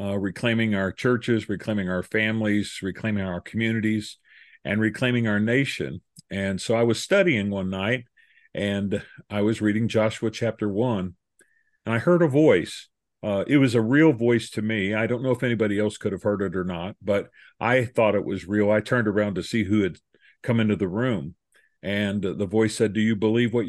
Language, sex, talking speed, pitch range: English, male, 200 wpm, 100-120 Hz